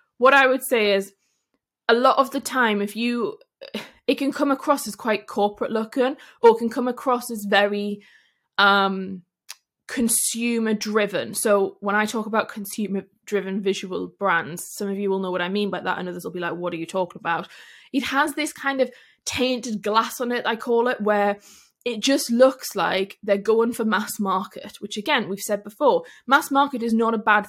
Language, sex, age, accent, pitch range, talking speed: English, female, 20-39, British, 205-265 Hz, 200 wpm